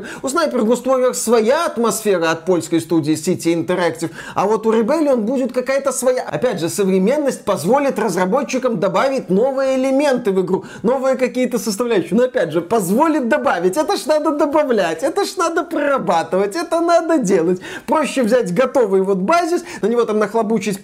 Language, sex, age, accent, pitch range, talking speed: Russian, male, 30-49, native, 185-260 Hz, 160 wpm